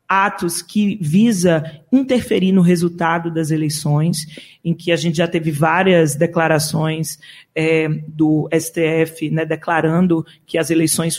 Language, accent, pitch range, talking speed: Portuguese, Brazilian, 165-195 Hz, 130 wpm